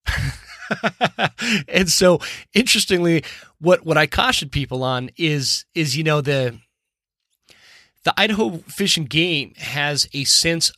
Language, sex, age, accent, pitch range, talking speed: English, male, 30-49, American, 130-160 Hz, 120 wpm